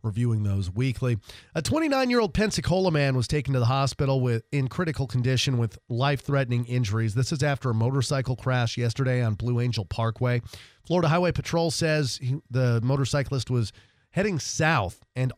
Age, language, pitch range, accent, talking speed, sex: 30-49, English, 115-140 Hz, American, 150 wpm, male